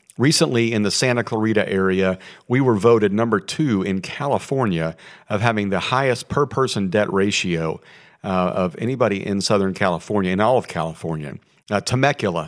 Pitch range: 95-120 Hz